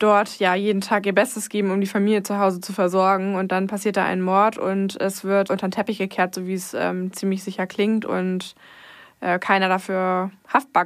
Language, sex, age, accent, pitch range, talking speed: German, female, 20-39, German, 190-210 Hz, 215 wpm